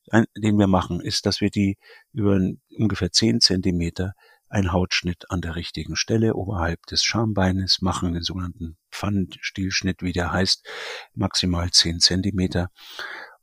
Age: 50-69